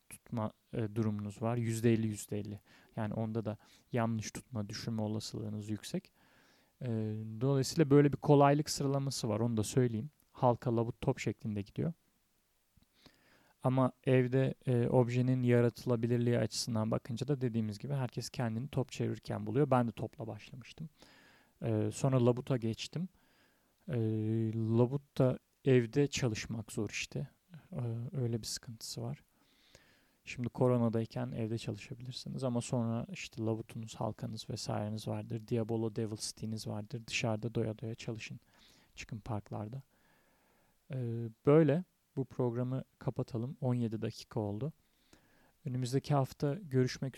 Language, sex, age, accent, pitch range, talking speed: Turkish, male, 40-59, native, 110-130 Hz, 110 wpm